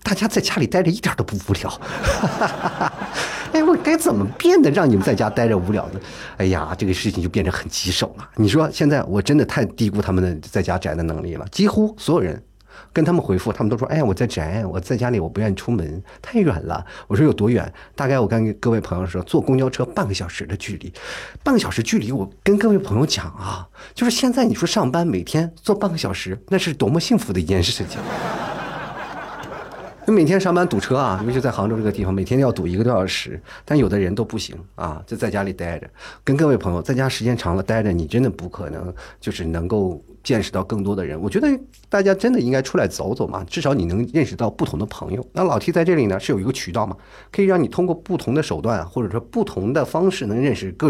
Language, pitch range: Chinese, 95-155 Hz